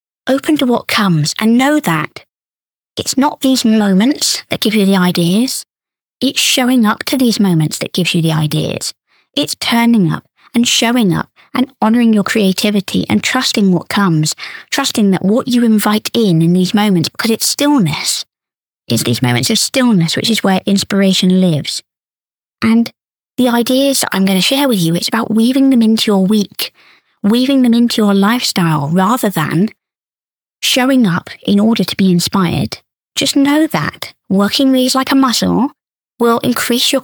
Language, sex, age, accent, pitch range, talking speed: English, female, 20-39, British, 180-245 Hz, 170 wpm